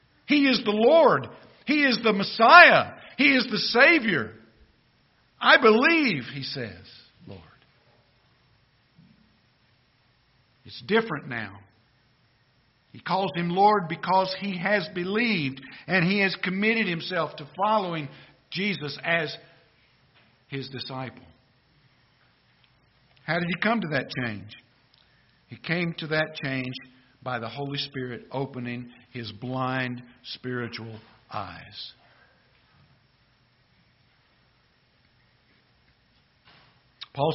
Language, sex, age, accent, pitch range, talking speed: English, male, 60-79, American, 125-165 Hz, 100 wpm